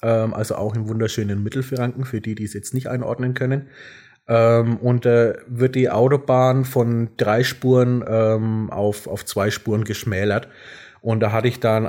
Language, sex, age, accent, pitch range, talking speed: German, male, 30-49, German, 110-130 Hz, 155 wpm